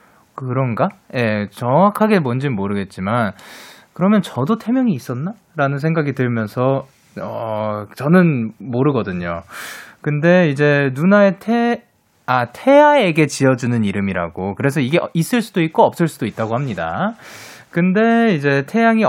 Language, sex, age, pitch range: Korean, male, 20-39, 125-210 Hz